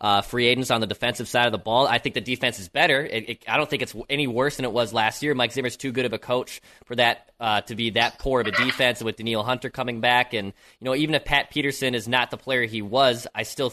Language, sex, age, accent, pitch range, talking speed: English, male, 20-39, American, 115-135 Hz, 290 wpm